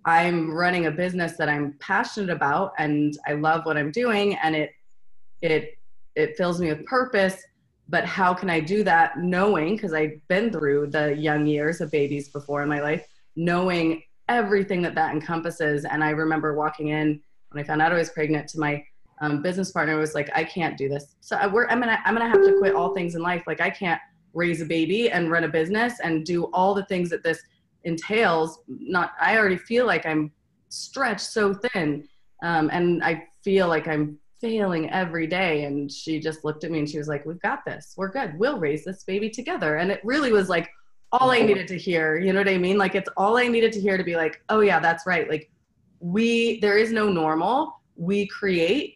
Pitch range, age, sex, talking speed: 155-195 Hz, 20-39, female, 215 wpm